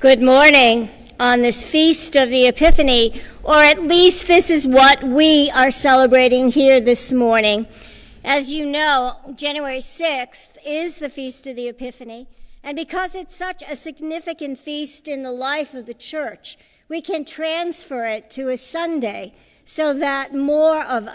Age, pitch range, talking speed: 50-69, 255-310 Hz, 155 wpm